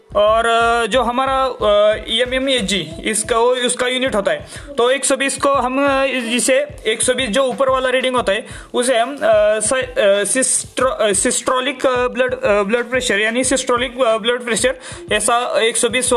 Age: 20-39